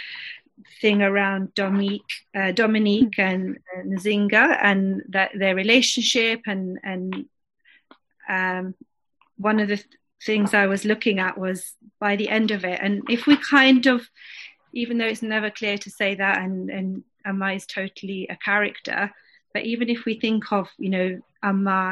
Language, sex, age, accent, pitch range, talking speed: English, female, 30-49, British, 190-220 Hz, 160 wpm